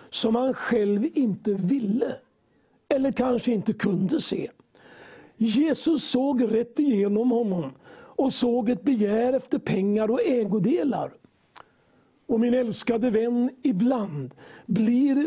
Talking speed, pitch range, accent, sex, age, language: 115 wpm, 215-275 Hz, native, male, 60-79, Swedish